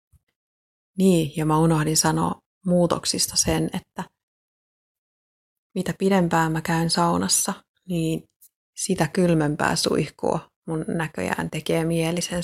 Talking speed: 100 wpm